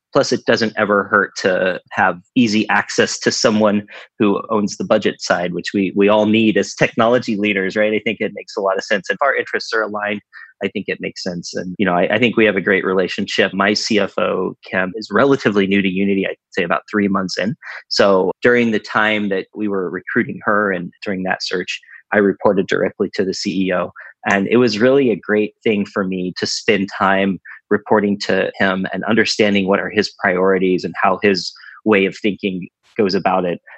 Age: 30-49